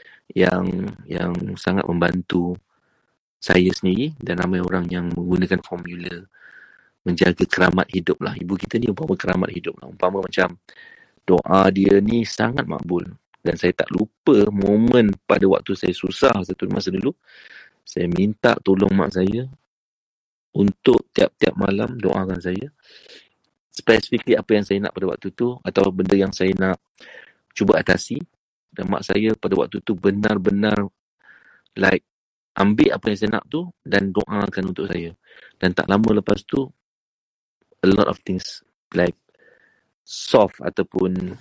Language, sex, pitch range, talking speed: Malay, male, 90-110 Hz, 140 wpm